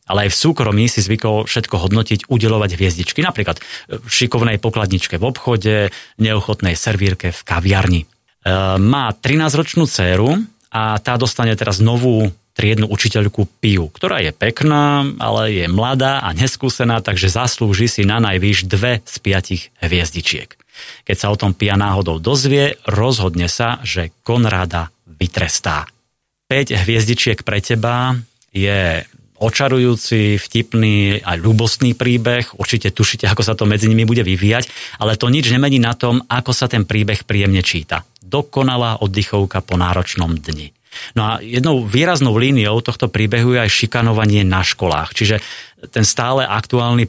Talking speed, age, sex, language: 145 wpm, 30-49, male, Slovak